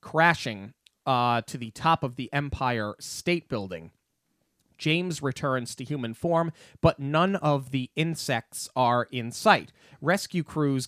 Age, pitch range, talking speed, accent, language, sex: 30-49, 125-170 Hz, 140 wpm, American, English, male